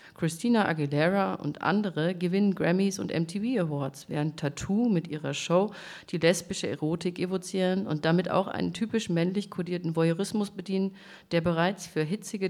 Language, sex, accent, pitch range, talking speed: German, female, German, 155-190 Hz, 150 wpm